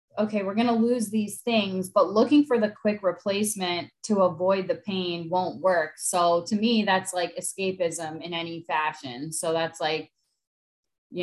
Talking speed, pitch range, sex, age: 170 wpm, 170-210 Hz, female, 20-39